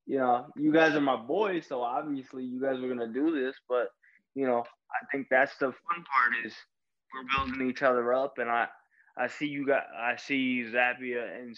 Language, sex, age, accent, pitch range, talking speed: English, male, 20-39, American, 120-135 Hz, 205 wpm